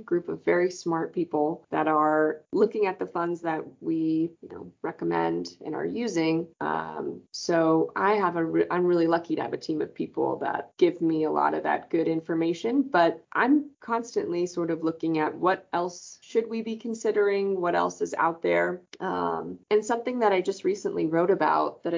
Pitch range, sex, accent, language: 165-235 Hz, female, American, English